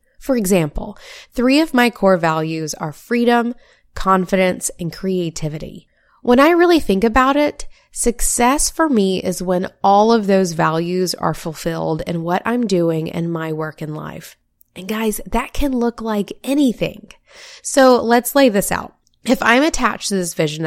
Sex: female